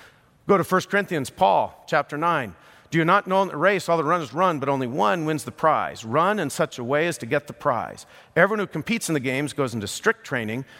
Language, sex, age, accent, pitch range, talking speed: English, male, 50-69, American, 130-170 Hz, 245 wpm